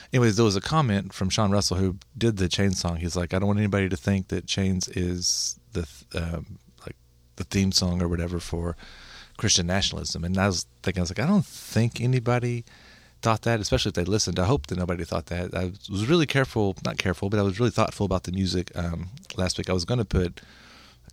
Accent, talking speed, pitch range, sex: American, 230 wpm, 85-105 Hz, male